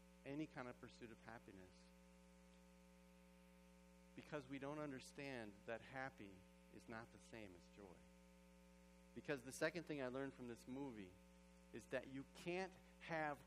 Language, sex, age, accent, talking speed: English, male, 40-59, American, 145 wpm